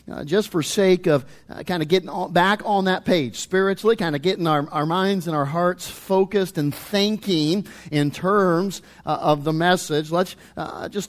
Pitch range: 155-195 Hz